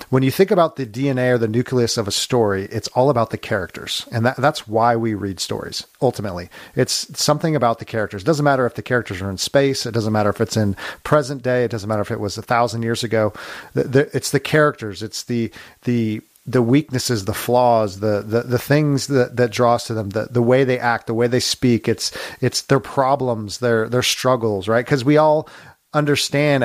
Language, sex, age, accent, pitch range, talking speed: English, male, 40-59, American, 110-135 Hz, 240 wpm